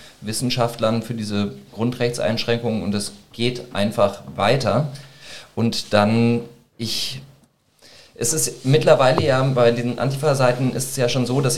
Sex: male